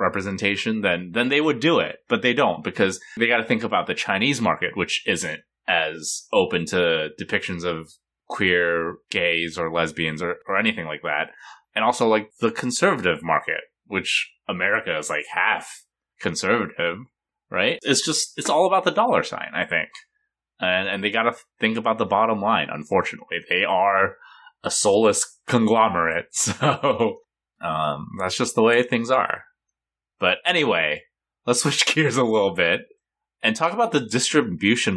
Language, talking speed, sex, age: English, 165 wpm, male, 20-39